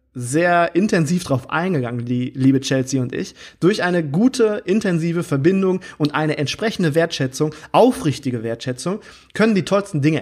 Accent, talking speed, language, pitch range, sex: German, 140 wpm, German, 130-175 Hz, male